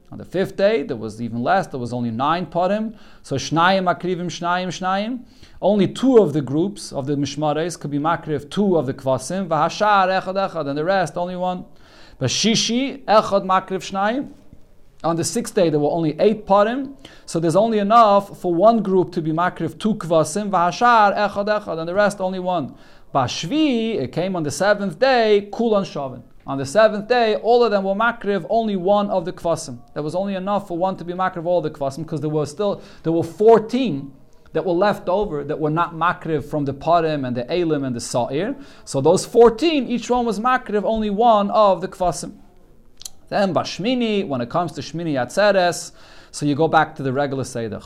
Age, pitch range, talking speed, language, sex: 40-59, 155-205 Hz, 200 wpm, English, male